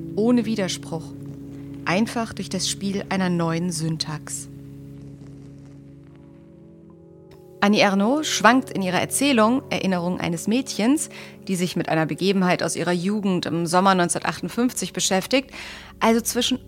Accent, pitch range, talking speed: German, 160-235 Hz, 115 wpm